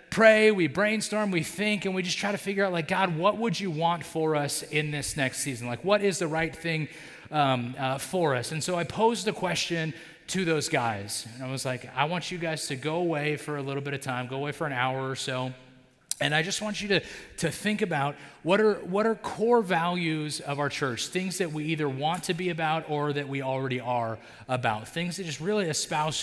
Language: English